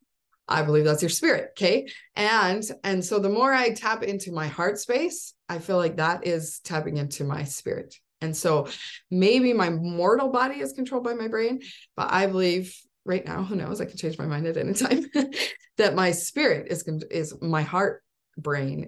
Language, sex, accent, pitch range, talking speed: English, female, American, 150-210 Hz, 190 wpm